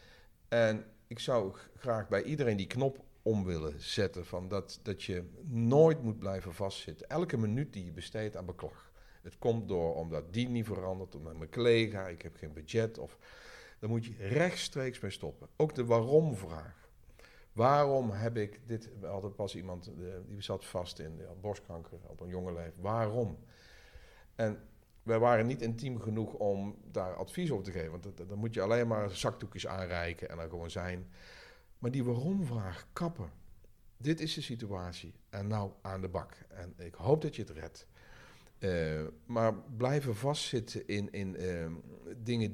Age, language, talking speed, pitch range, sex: 50-69, Dutch, 175 wpm, 90-115 Hz, male